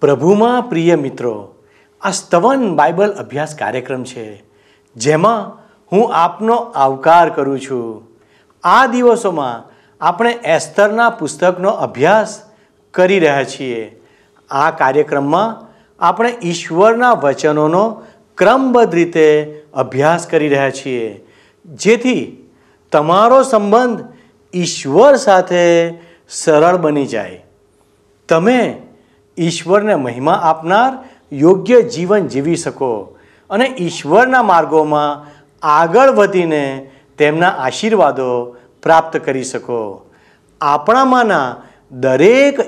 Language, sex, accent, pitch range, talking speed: Gujarati, male, native, 140-220 Hz, 90 wpm